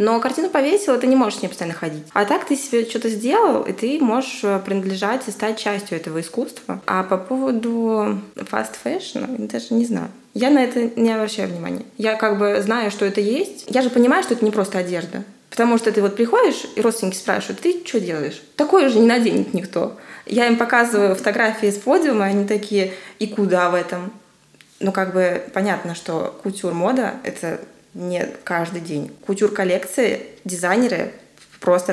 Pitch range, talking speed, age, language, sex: 185-230 Hz, 180 wpm, 20-39, Russian, female